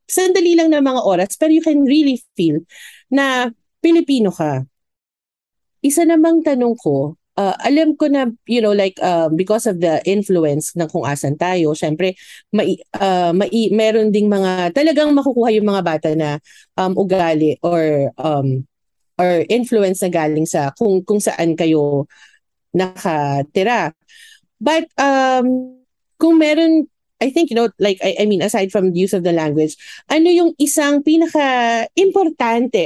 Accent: Filipino